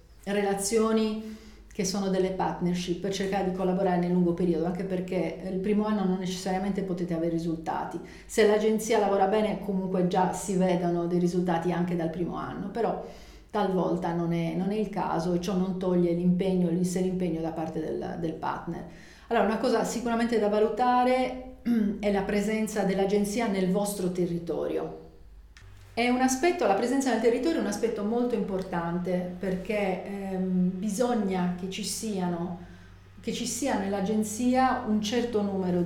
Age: 40-59